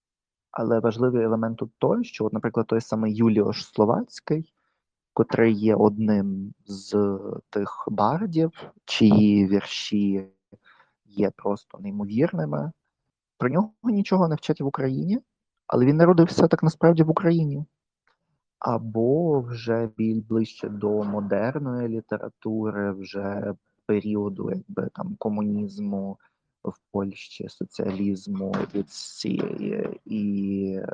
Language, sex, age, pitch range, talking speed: Ukrainian, male, 20-39, 105-135 Hz, 100 wpm